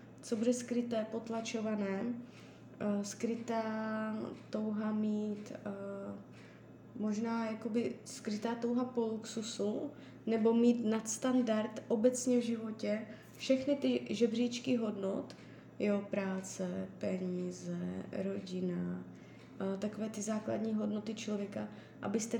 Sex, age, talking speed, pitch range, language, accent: female, 20-39, 90 wpm, 205-240 Hz, Czech, native